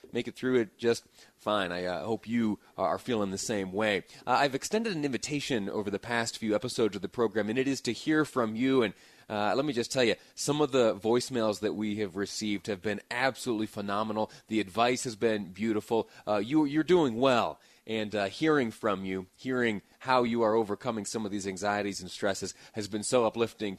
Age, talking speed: 30-49, 210 wpm